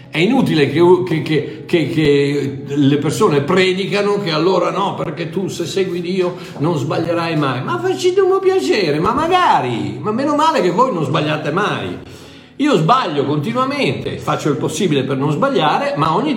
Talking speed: 160 wpm